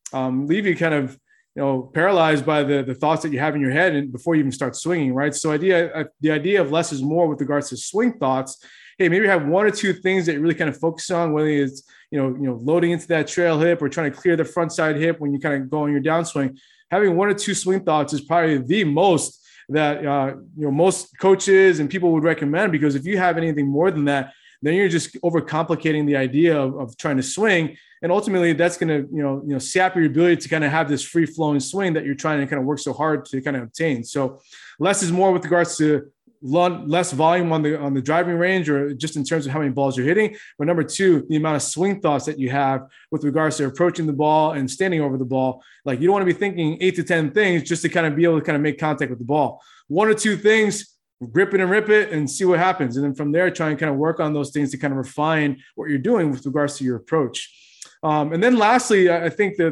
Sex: male